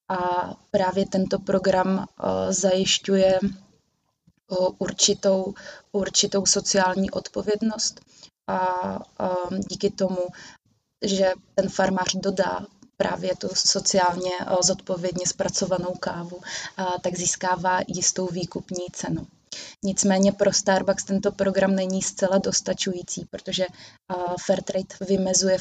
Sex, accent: female, native